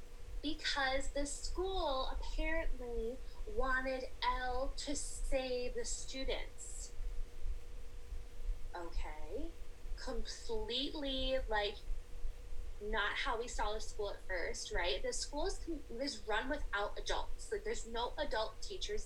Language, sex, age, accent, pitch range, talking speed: English, female, 10-29, American, 190-290 Hz, 105 wpm